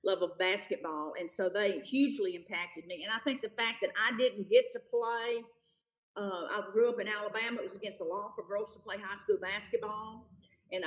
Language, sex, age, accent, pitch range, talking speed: English, female, 50-69, American, 200-280 Hz, 210 wpm